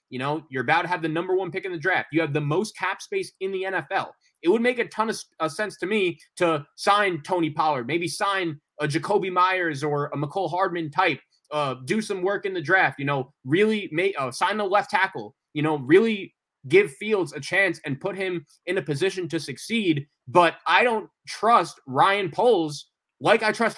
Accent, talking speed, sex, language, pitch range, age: American, 210 wpm, male, English, 160-215 Hz, 20-39